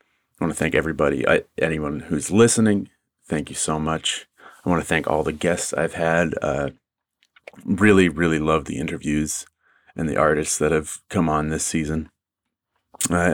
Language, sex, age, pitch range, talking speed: English, male, 30-49, 80-95 Hz, 165 wpm